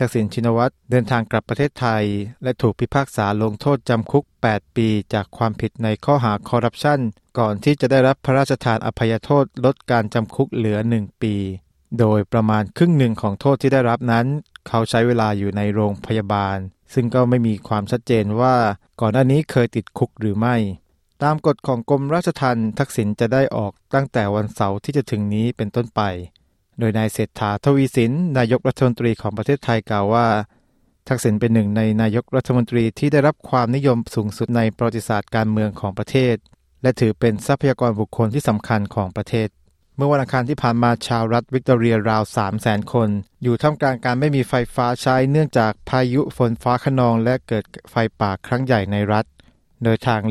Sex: male